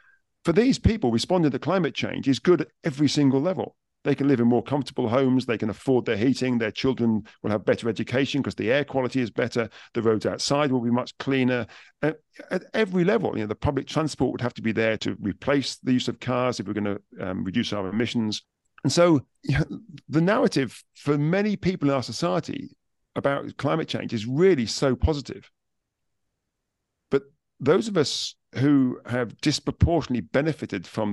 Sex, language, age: male, English, 40-59